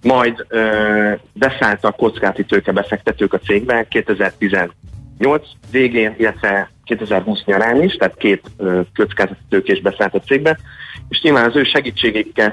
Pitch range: 95-115 Hz